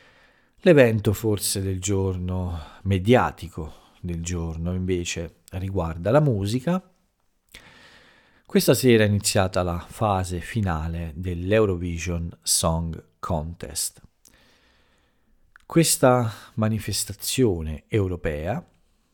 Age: 50-69